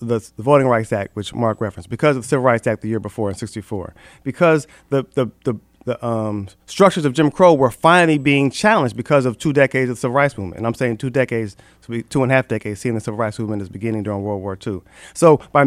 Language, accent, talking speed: English, American, 245 wpm